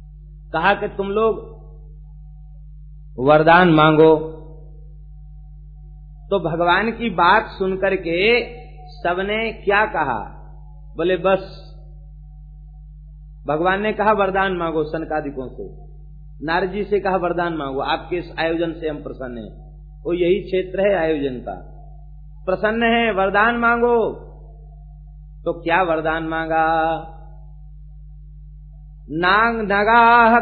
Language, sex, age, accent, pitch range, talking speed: Hindi, male, 50-69, native, 150-205 Hz, 105 wpm